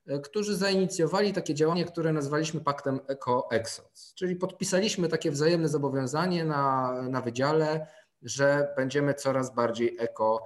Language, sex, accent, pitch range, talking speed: Polish, male, native, 135-170 Hz, 120 wpm